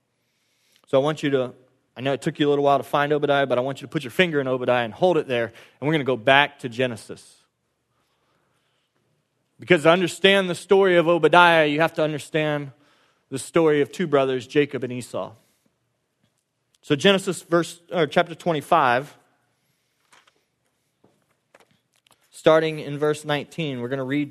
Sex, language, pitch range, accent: male, English, 135-180 Hz, American